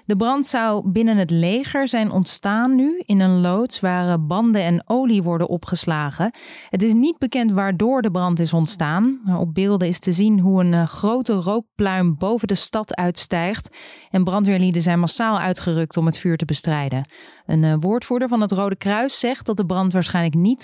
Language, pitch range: Dutch, 175-230 Hz